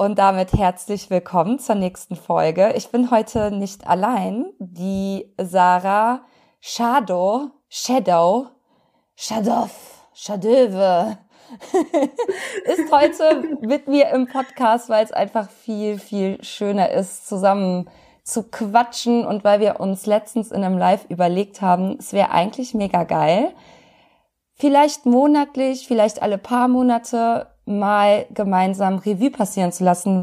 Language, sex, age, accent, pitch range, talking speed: German, female, 20-39, German, 185-235 Hz, 125 wpm